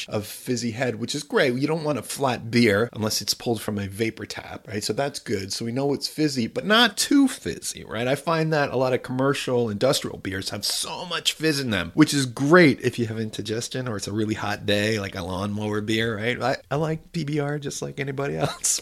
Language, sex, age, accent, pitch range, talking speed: English, male, 30-49, American, 110-145 Hz, 235 wpm